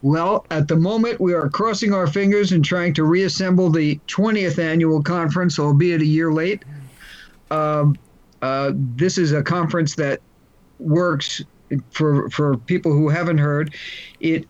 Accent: American